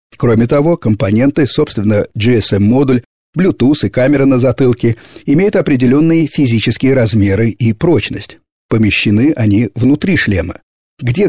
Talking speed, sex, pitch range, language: 110 wpm, male, 105-130 Hz, Russian